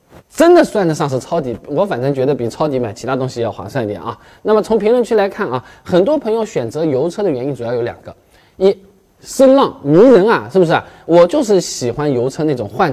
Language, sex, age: Chinese, male, 20-39